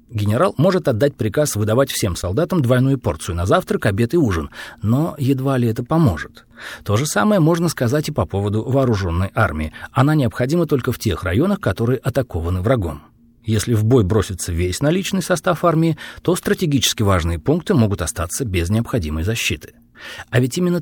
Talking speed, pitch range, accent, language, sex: 165 wpm, 100-150 Hz, native, Russian, male